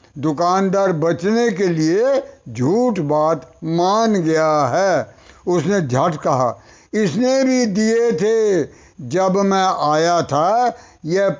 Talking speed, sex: 110 wpm, male